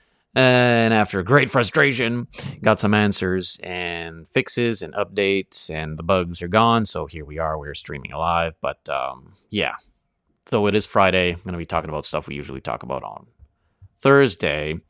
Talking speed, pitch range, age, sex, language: 175 wpm, 80-105 Hz, 30-49, male, English